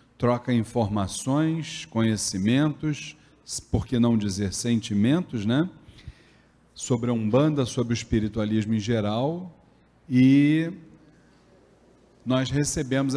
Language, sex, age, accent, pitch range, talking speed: Portuguese, male, 40-59, Brazilian, 115-140 Hz, 90 wpm